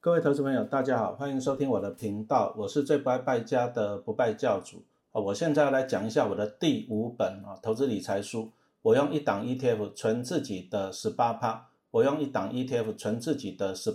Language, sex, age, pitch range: Chinese, male, 50-69, 110-145 Hz